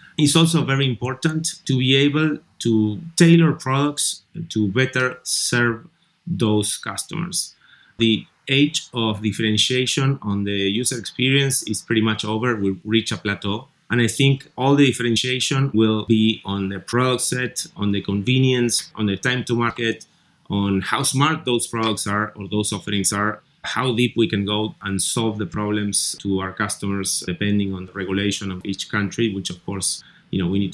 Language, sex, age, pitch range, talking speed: English, male, 30-49, 100-135 Hz, 170 wpm